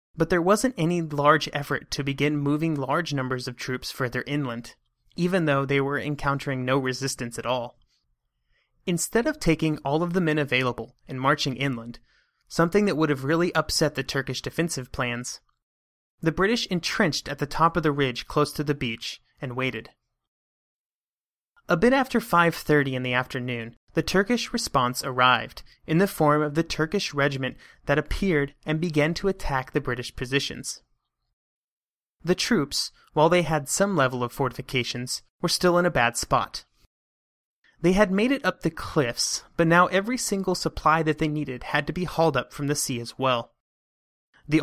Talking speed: 170 wpm